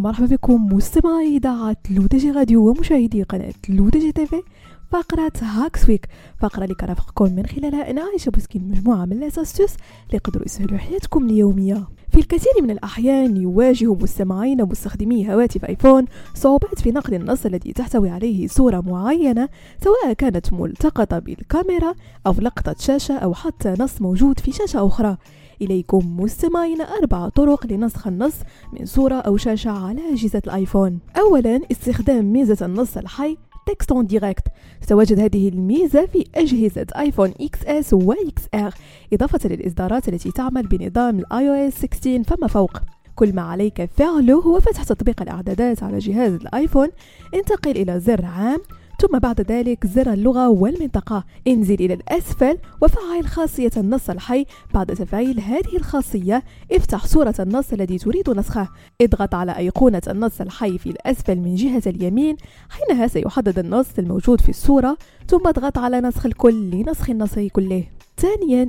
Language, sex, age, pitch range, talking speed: French, female, 20-39, 200-280 Hz, 140 wpm